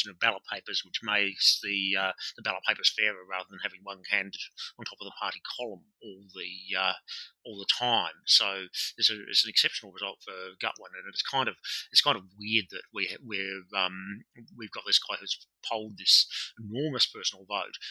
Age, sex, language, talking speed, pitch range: 30-49, male, English, 200 wpm, 100-120 Hz